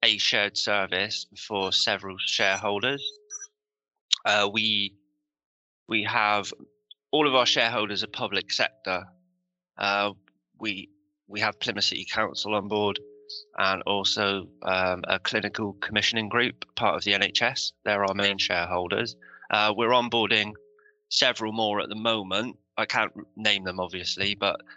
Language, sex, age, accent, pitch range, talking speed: English, male, 20-39, British, 95-115 Hz, 135 wpm